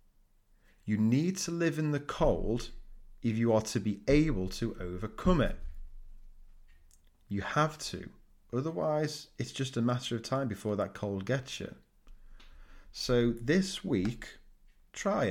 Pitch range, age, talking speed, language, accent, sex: 95-135 Hz, 30-49, 135 wpm, English, British, male